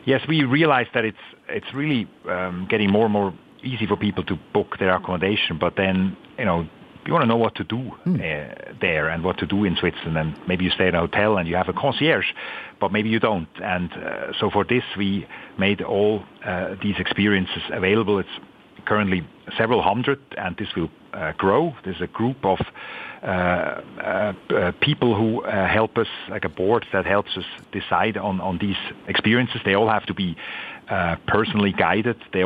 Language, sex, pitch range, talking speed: English, male, 90-105 Hz, 200 wpm